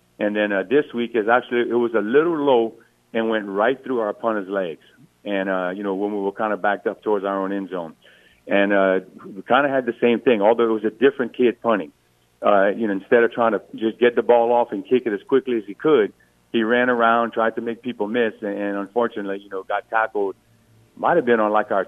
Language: English